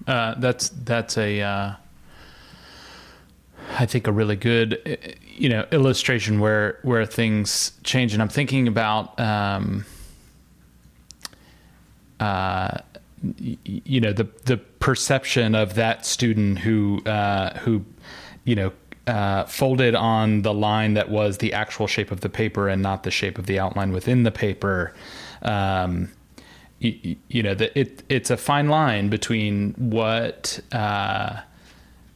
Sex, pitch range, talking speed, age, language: male, 95-115 Hz, 130 wpm, 30-49, English